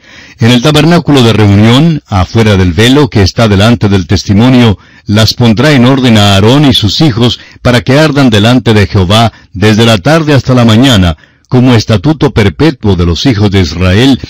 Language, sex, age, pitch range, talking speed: Spanish, male, 60-79, 100-145 Hz, 175 wpm